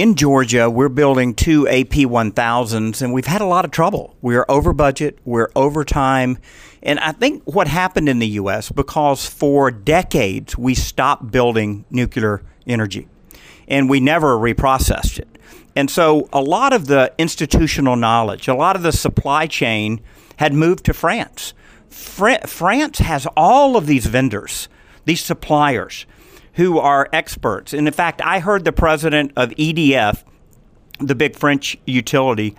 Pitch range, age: 125-160 Hz, 50-69